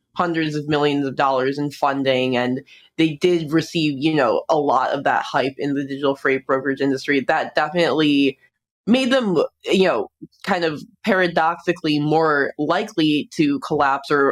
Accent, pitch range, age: American, 140-170 Hz, 20-39